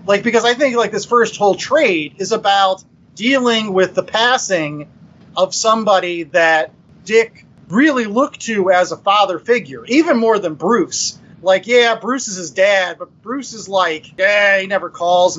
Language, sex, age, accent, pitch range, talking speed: English, male, 30-49, American, 170-220 Hz, 170 wpm